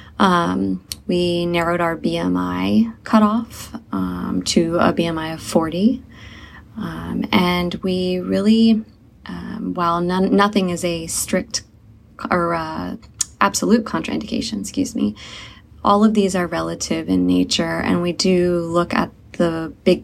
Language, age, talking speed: English, 20-39, 125 wpm